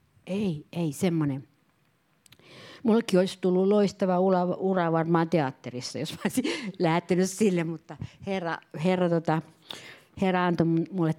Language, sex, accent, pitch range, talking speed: Finnish, female, native, 160-215 Hz, 120 wpm